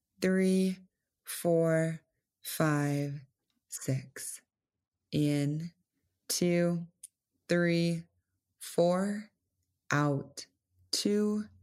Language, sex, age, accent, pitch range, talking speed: English, female, 20-39, American, 110-175 Hz, 50 wpm